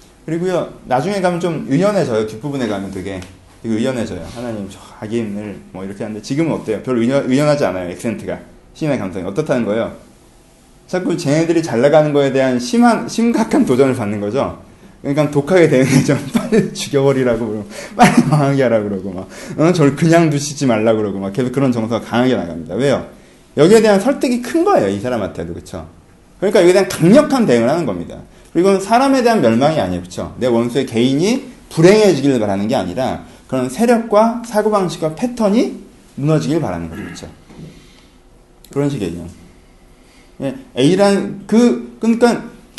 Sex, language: male, Korean